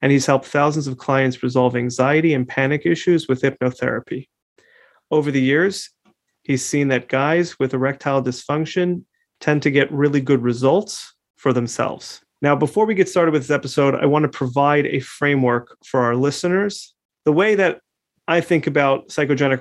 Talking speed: 170 wpm